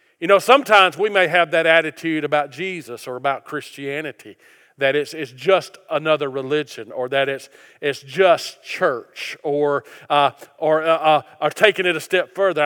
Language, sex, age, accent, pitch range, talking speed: English, male, 40-59, American, 150-210 Hz, 170 wpm